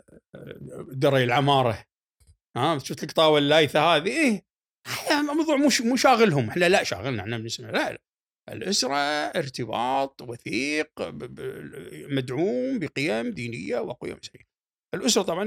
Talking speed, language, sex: 95 wpm, Arabic, male